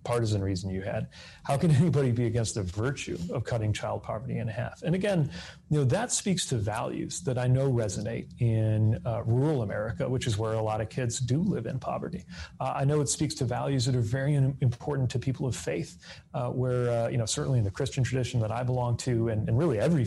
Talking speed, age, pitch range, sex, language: 230 wpm, 30-49, 110-135 Hz, male, English